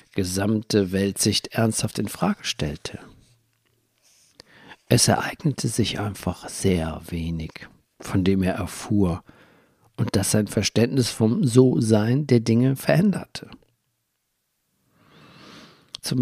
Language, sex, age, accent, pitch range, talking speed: German, male, 50-69, German, 105-125 Hz, 95 wpm